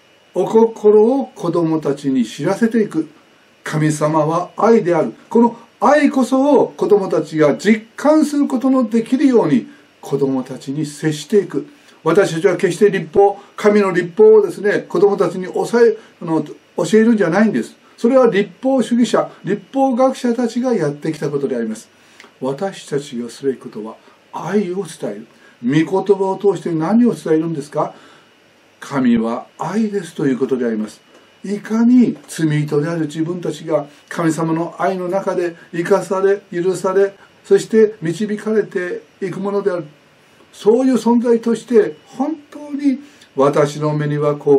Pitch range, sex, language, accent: 150-230 Hz, male, Japanese, native